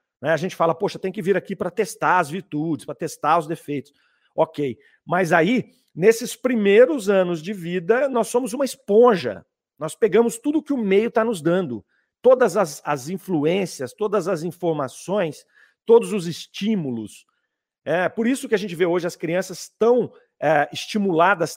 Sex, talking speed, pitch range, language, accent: male, 165 wpm, 170-230 Hz, Portuguese, Brazilian